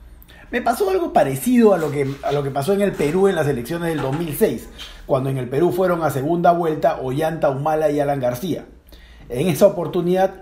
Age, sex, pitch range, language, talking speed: 40-59, male, 130-190 Hz, Spanish, 200 wpm